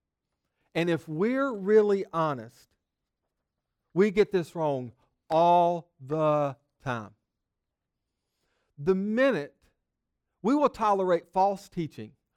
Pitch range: 160-205 Hz